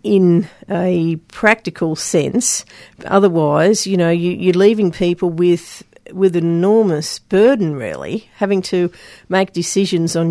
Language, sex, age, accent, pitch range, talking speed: English, female, 40-59, Australian, 175-220 Hz, 120 wpm